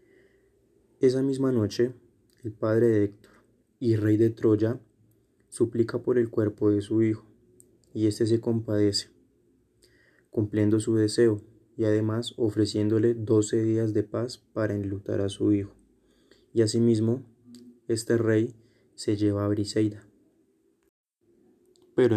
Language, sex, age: Spanish, male, 20-39